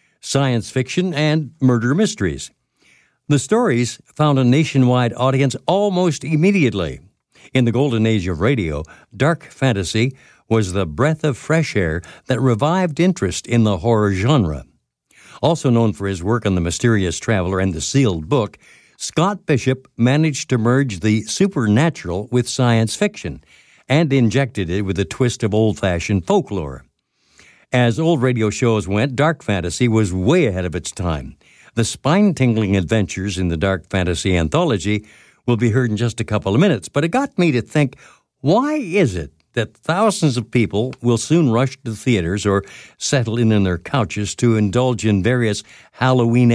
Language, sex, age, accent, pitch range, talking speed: English, male, 60-79, American, 100-140 Hz, 160 wpm